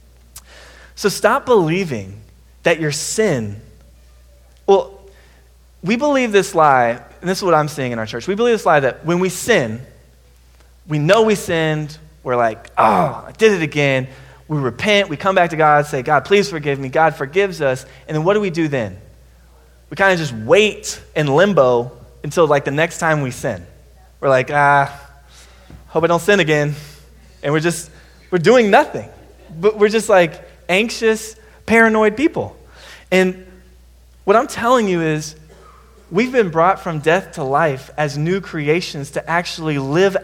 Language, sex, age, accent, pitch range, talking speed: English, male, 20-39, American, 130-195 Hz, 170 wpm